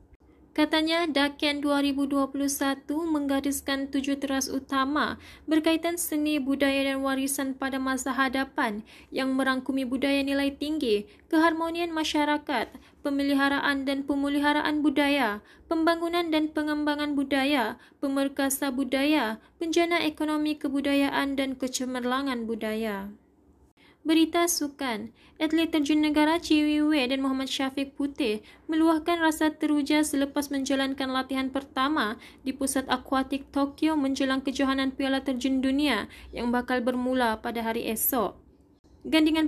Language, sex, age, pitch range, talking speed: Malay, female, 20-39, 265-300 Hz, 110 wpm